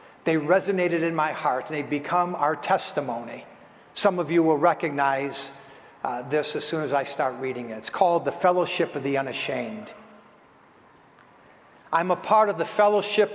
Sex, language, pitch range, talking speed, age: male, English, 160-200 Hz, 165 wpm, 50-69